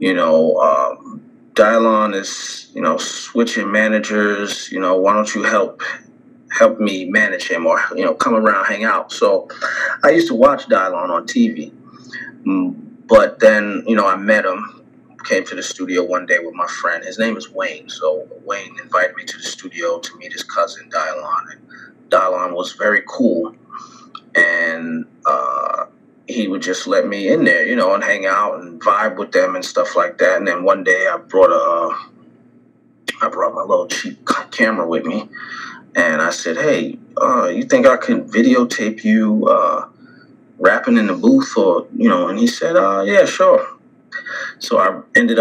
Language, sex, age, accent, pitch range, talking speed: English, male, 30-49, American, 240-285 Hz, 180 wpm